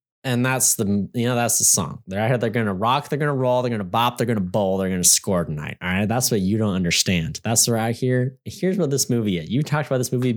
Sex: male